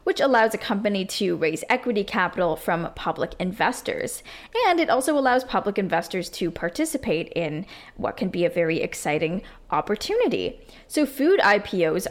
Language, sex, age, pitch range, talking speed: English, female, 10-29, 170-230 Hz, 150 wpm